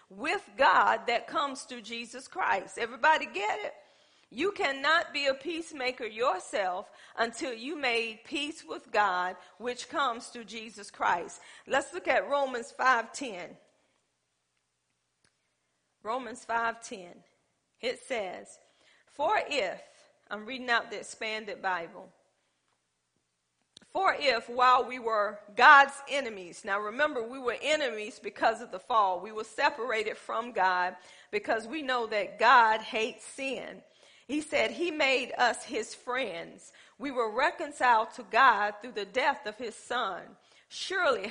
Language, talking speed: English, 130 wpm